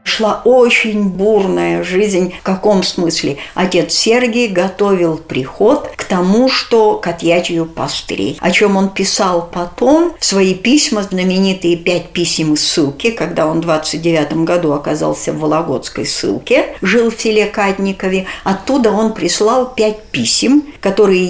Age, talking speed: 60-79, 135 wpm